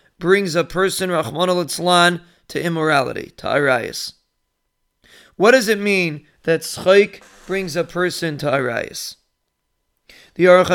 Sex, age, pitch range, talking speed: male, 40-59, 170-200 Hz, 115 wpm